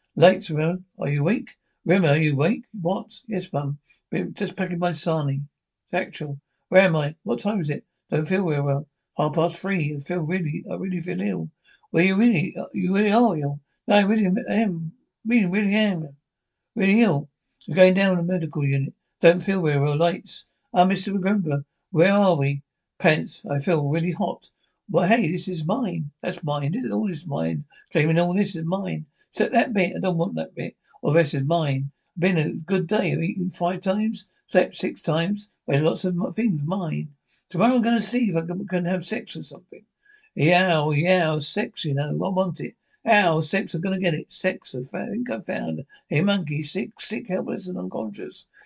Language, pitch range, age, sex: English, 155-200 Hz, 60-79, male